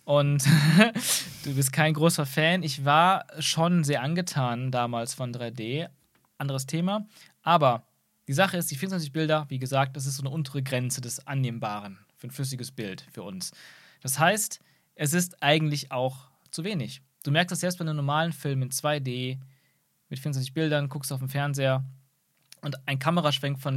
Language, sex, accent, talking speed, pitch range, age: German, male, German, 170 wpm, 135-160 Hz, 20-39